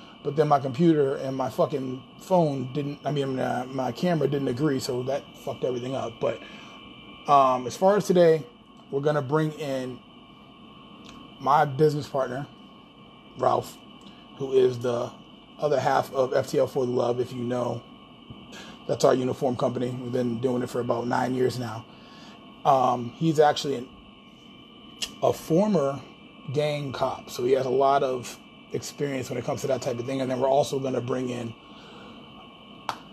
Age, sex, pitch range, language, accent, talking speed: 30-49, male, 130-155 Hz, English, American, 165 wpm